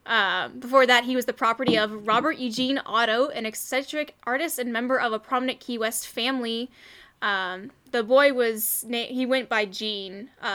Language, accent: English, American